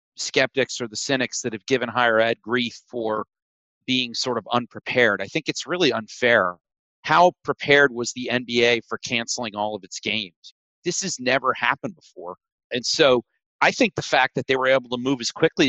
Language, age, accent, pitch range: English, 40-59, American, 115-145 Hz